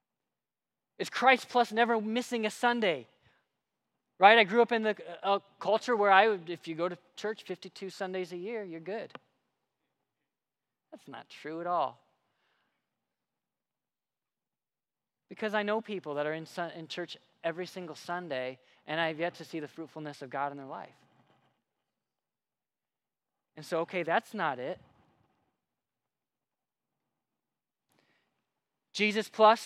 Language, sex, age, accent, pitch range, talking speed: English, male, 20-39, American, 170-230 Hz, 130 wpm